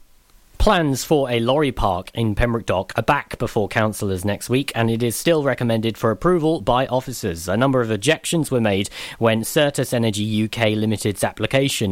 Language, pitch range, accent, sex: English, 105-140 Hz, British, male